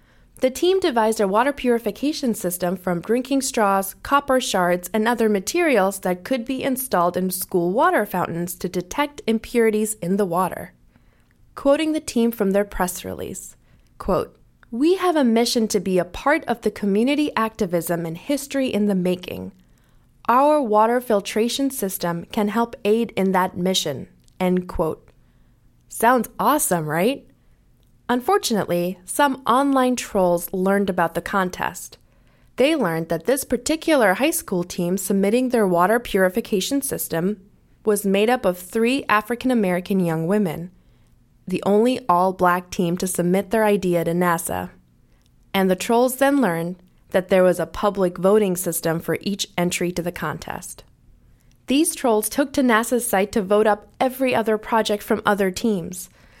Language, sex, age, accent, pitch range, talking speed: English, female, 20-39, American, 180-245 Hz, 150 wpm